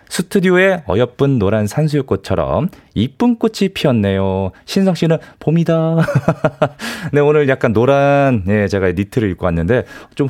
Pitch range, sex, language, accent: 100-165 Hz, male, Korean, native